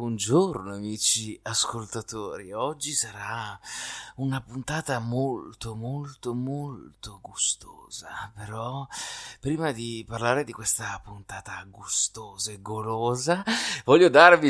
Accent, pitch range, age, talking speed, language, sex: native, 110-145 Hz, 30-49, 95 wpm, Italian, male